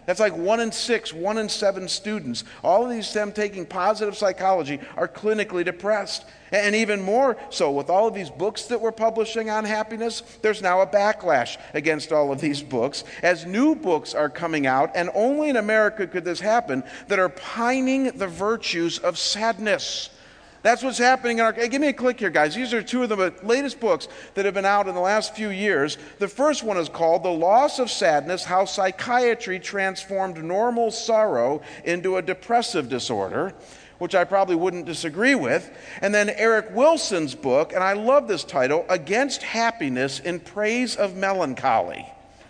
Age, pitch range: 50-69, 170-225 Hz